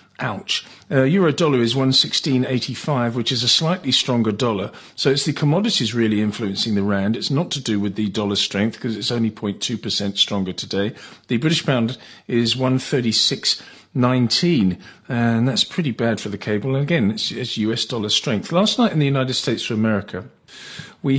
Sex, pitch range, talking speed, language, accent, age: male, 115-140 Hz, 200 wpm, English, British, 40-59